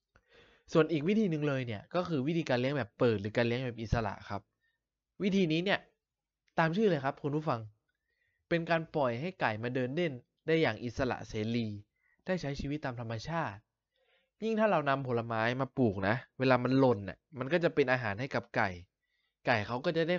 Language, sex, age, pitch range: Thai, male, 20-39, 110-145 Hz